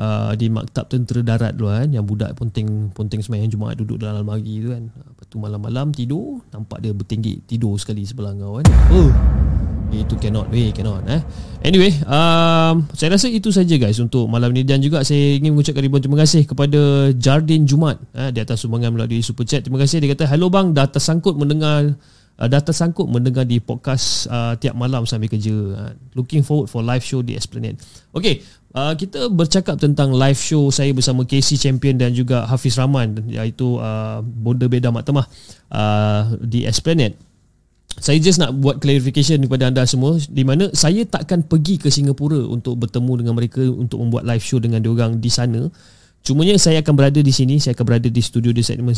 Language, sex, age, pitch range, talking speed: Malay, male, 30-49, 115-145 Hz, 190 wpm